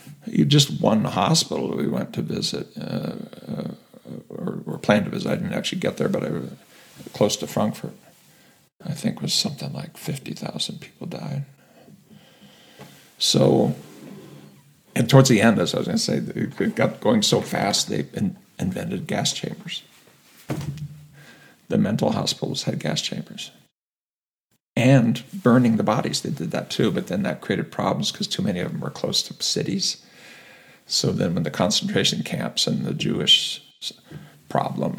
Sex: male